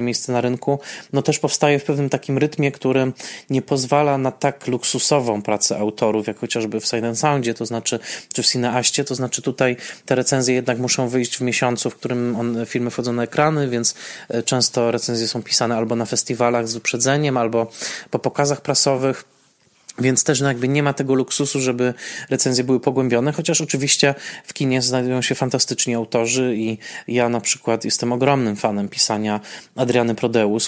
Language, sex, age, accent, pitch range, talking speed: Polish, male, 20-39, native, 120-140 Hz, 170 wpm